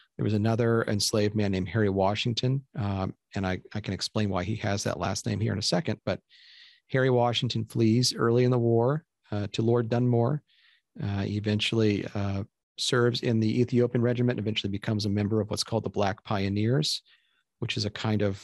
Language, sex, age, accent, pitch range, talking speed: English, male, 40-59, American, 100-125 Hz, 200 wpm